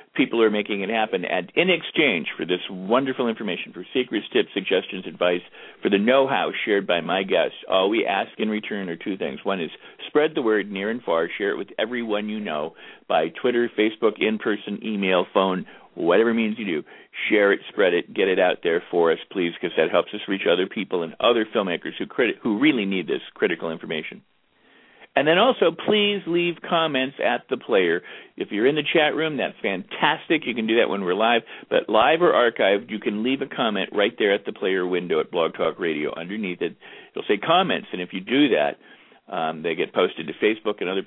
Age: 50-69